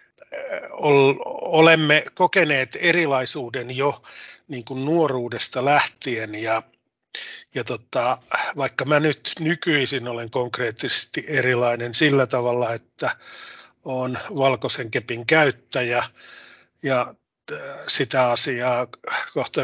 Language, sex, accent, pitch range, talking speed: Finnish, male, native, 120-145 Hz, 90 wpm